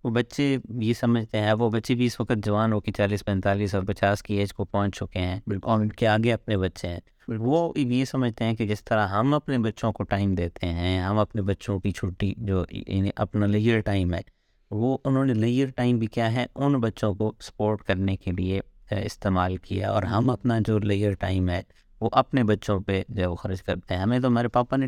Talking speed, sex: 215 wpm, male